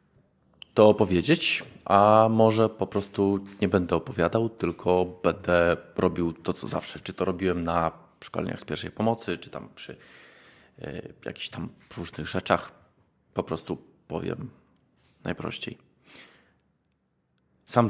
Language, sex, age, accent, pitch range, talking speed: Polish, male, 40-59, native, 85-100 Hz, 115 wpm